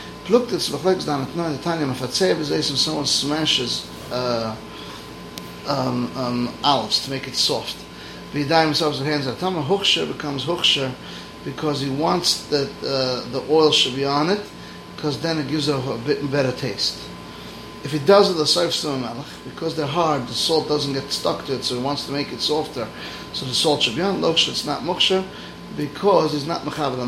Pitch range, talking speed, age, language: 130-160 Hz, 175 wpm, 30-49, English